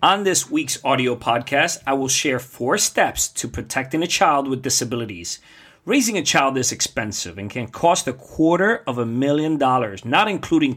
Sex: male